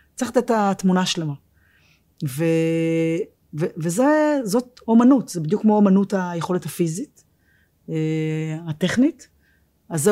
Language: Hebrew